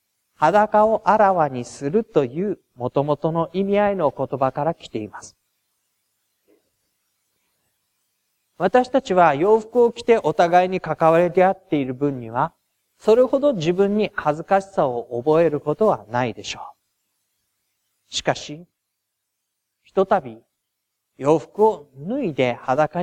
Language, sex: Japanese, male